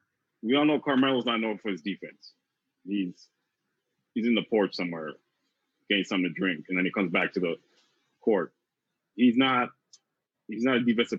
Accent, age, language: American, 30-49, English